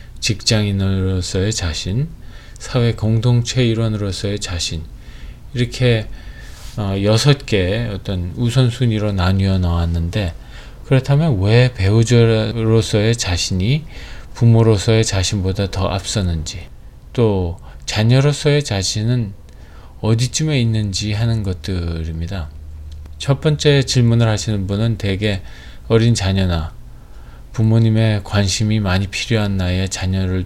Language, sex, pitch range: Korean, male, 95-115 Hz